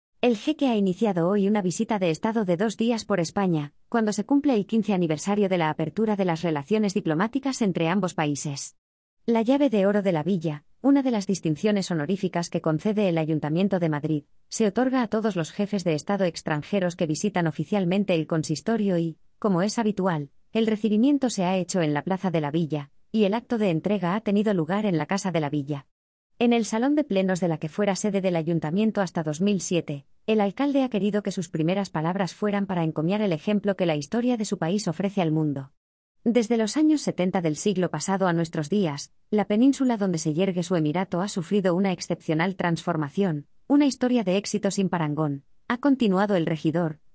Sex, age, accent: female, 20-39, Spanish